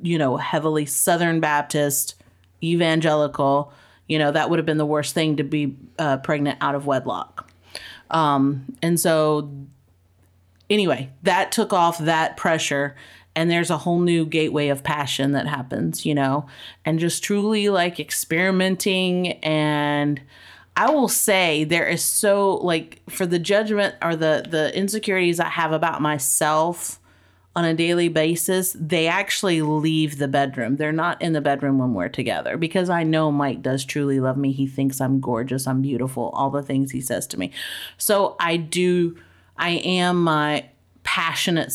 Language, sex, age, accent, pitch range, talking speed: English, female, 30-49, American, 140-170 Hz, 160 wpm